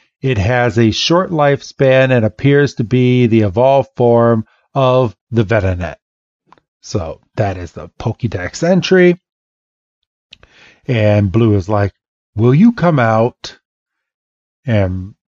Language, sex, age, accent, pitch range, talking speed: English, male, 40-59, American, 110-150 Hz, 115 wpm